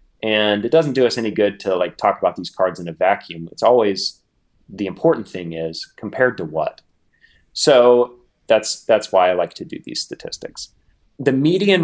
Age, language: 30-49, English